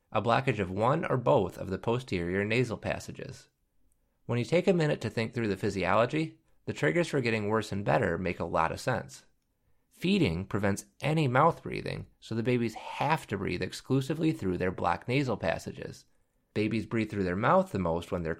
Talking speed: 190 wpm